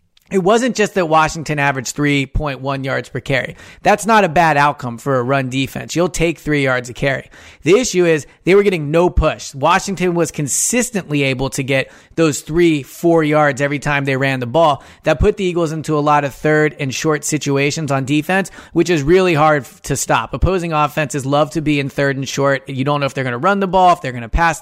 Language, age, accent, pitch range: English, 30-49, American, 140-175 Hz